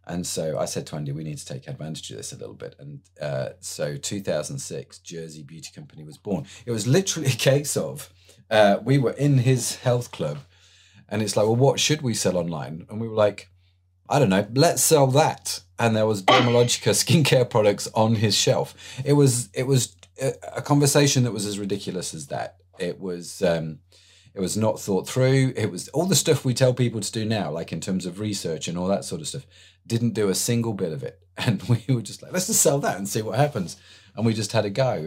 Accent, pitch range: British, 90-130 Hz